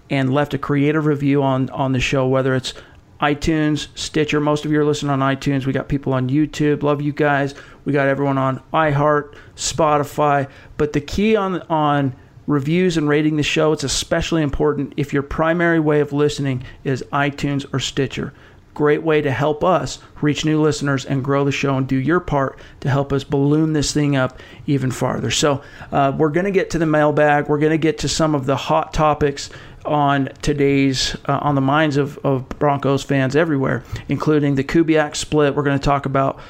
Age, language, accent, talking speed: 40-59, English, American, 195 wpm